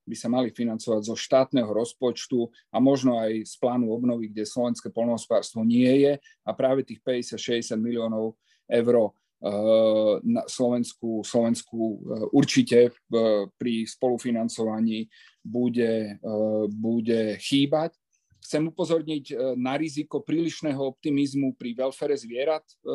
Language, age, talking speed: Slovak, 30-49, 110 wpm